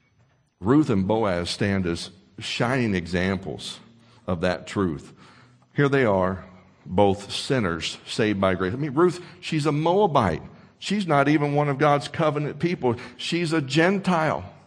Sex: male